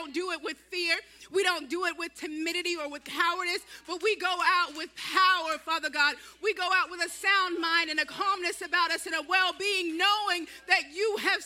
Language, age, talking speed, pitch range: English, 30-49, 210 wpm, 330-385 Hz